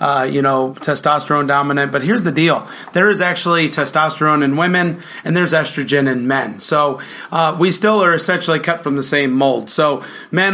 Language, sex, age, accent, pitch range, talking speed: English, male, 30-49, American, 140-160 Hz, 190 wpm